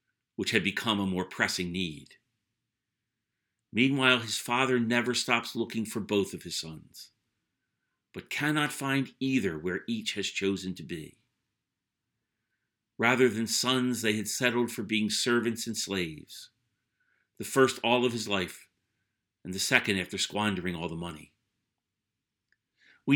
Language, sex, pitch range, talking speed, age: English, male, 100-115 Hz, 140 wpm, 50-69